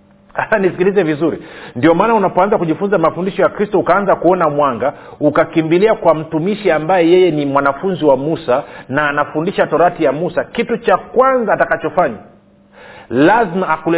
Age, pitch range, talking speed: 40-59, 150-195 Hz, 135 wpm